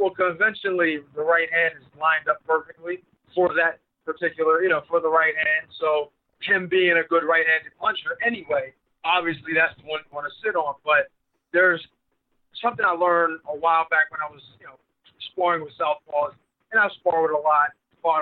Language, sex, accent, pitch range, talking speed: English, male, American, 160-225 Hz, 190 wpm